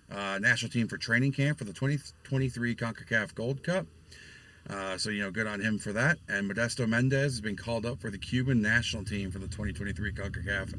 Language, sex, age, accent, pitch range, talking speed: English, male, 40-59, American, 100-120 Hz, 200 wpm